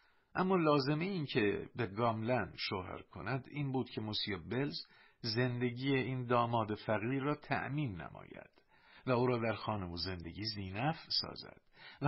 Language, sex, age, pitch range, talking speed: Persian, male, 50-69, 105-150 Hz, 150 wpm